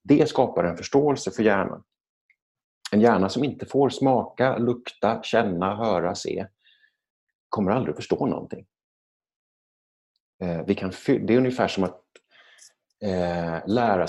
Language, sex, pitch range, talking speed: English, male, 90-125 Hz, 115 wpm